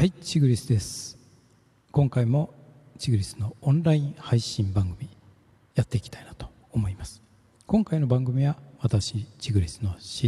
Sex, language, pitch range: male, Japanese, 105-160 Hz